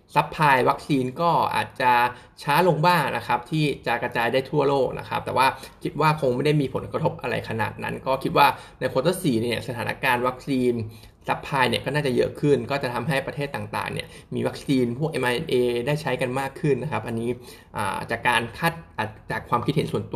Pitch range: 125-155 Hz